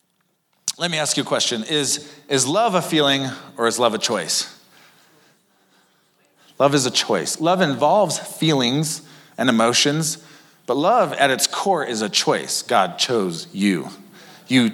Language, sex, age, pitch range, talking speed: English, male, 40-59, 110-155 Hz, 150 wpm